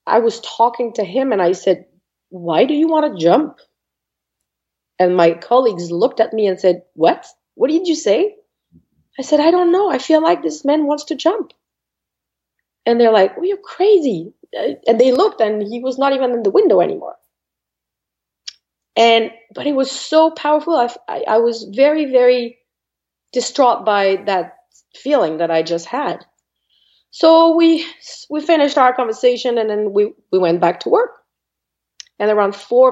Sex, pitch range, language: female, 190-295 Hz, English